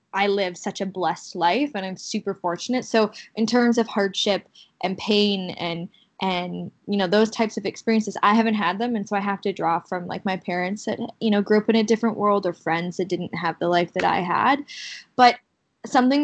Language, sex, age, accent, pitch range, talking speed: English, female, 10-29, American, 185-225 Hz, 220 wpm